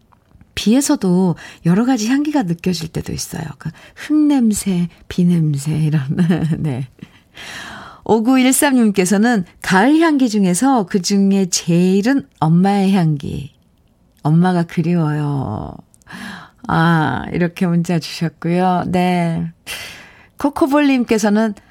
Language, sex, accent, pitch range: Korean, female, native, 160-245 Hz